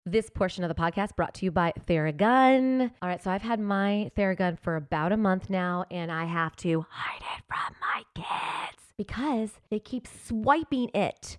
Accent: American